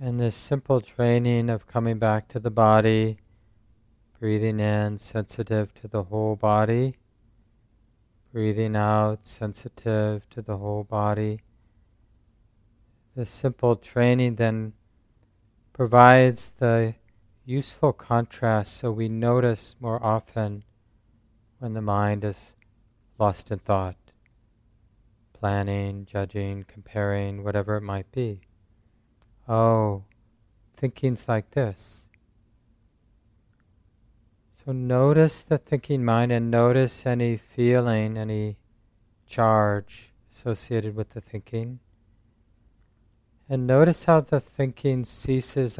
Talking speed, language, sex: 100 wpm, English, male